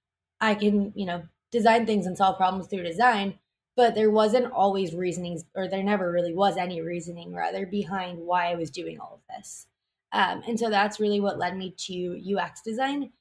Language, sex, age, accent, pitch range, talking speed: English, female, 20-39, American, 180-215 Hz, 195 wpm